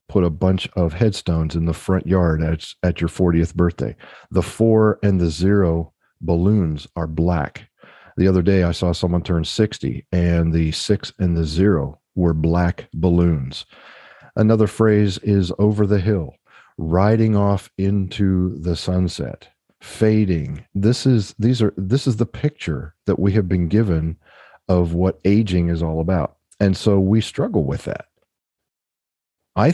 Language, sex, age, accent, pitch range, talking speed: English, male, 40-59, American, 85-105 Hz, 155 wpm